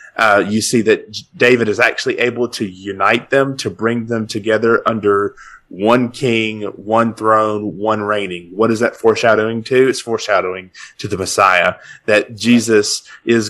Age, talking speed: 30-49, 155 wpm